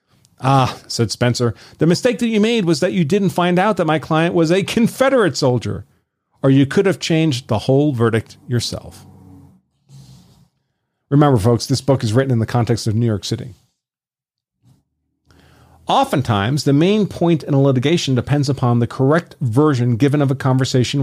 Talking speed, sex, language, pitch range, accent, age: 170 wpm, male, English, 130-175 Hz, American, 40-59